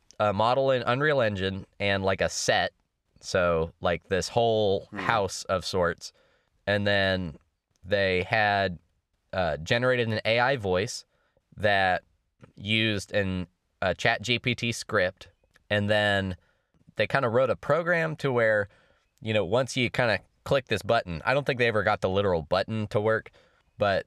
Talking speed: 155 wpm